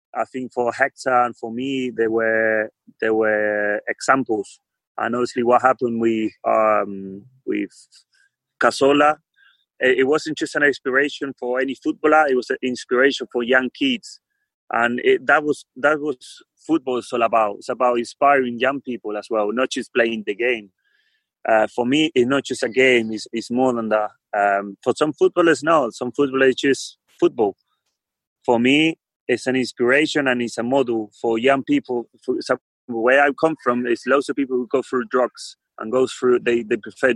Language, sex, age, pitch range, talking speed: English, male, 30-49, 120-150 Hz, 180 wpm